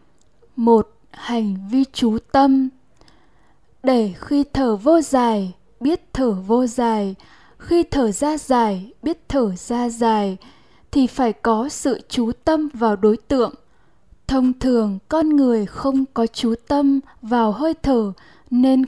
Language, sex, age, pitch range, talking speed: Vietnamese, female, 10-29, 230-275 Hz, 135 wpm